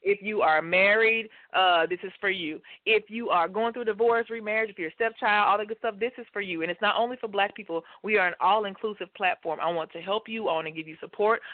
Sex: female